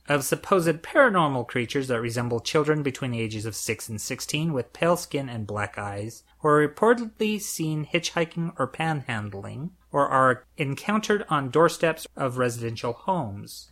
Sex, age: male, 30-49